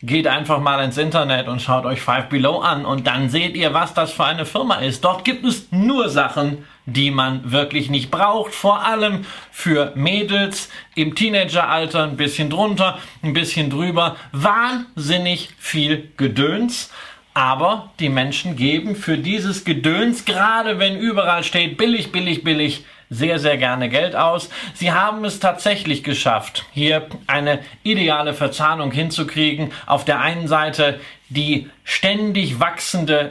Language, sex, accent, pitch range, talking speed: German, male, German, 145-180 Hz, 150 wpm